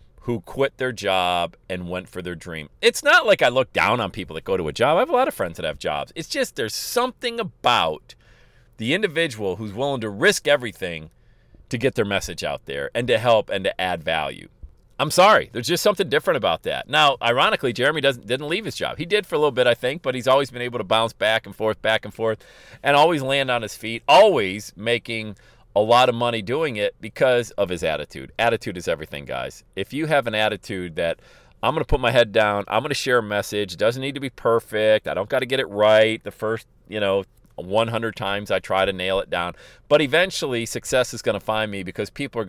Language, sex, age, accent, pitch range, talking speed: English, male, 40-59, American, 105-140 Hz, 240 wpm